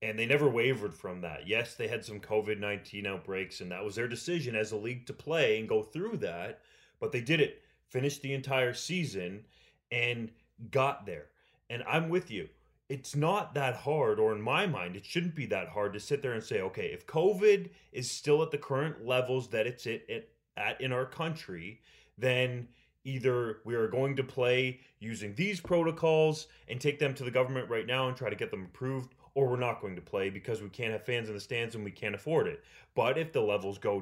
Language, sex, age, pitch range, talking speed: English, male, 30-49, 120-165 Hz, 215 wpm